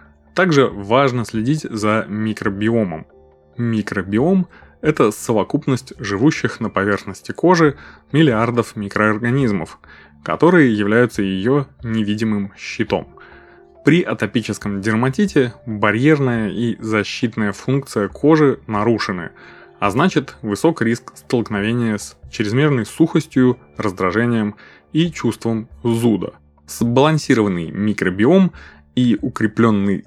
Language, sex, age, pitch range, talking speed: Russian, male, 20-39, 100-130 Hz, 90 wpm